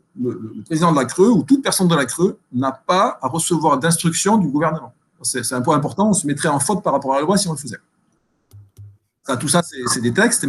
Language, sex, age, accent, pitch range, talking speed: French, male, 50-69, French, 130-185 Hz, 250 wpm